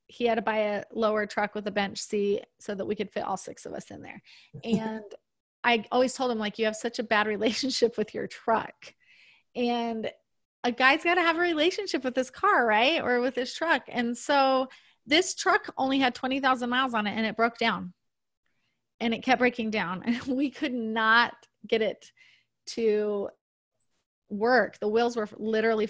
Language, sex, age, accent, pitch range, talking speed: English, female, 30-49, American, 220-260 Hz, 195 wpm